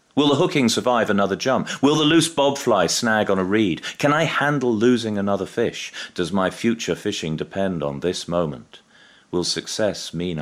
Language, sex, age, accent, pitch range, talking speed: English, male, 40-59, British, 90-130 Hz, 180 wpm